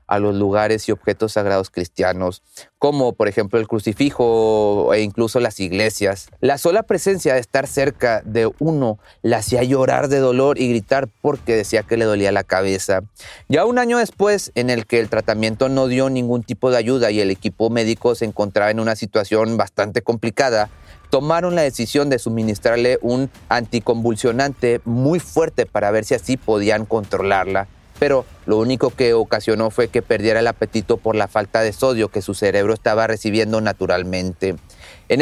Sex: male